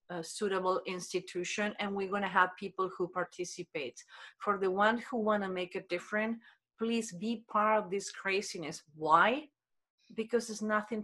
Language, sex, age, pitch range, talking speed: English, female, 40-59, 180-215 Hz, 150 wpm